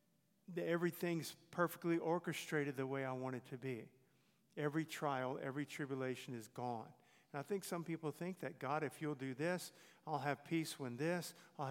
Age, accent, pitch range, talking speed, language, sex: 50-69, American, 140-175 Hz, 175 wpm, English, male